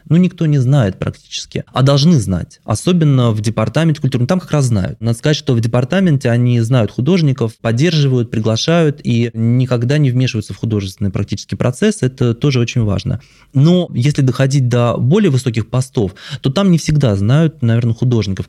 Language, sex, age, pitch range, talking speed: Russian, male, 20-39, 110-140 Hz, 170 wpm